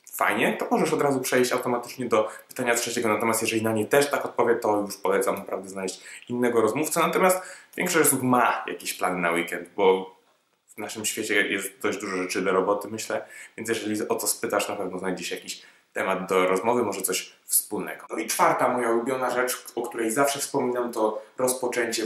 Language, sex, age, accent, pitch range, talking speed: Polish, male, 20-39, native, 110-125 Hz, 190 wpm